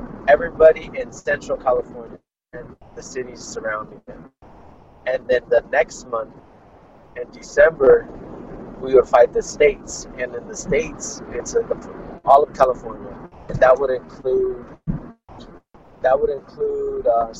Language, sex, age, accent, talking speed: English, male, 30-49, American, 115 wpm